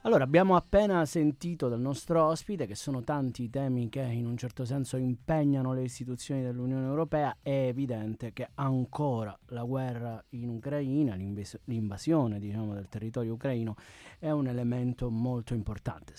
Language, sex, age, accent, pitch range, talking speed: Italian, male, 30-49, native, 120-150 Hz, 150 wpm